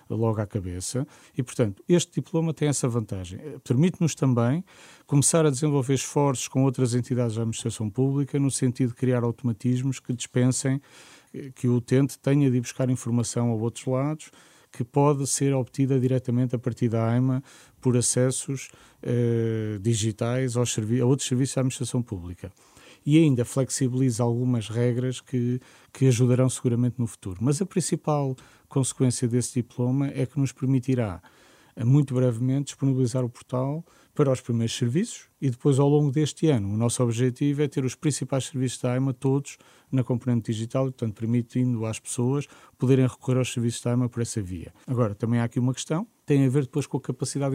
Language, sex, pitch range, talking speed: Portuguese, male, 120-135 Hz, 170 wpm